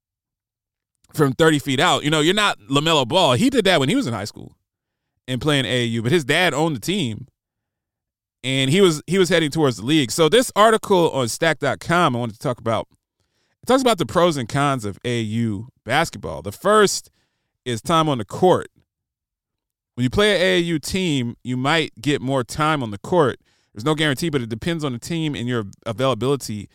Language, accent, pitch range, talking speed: English, American, 115-165 Hz, 200 wpm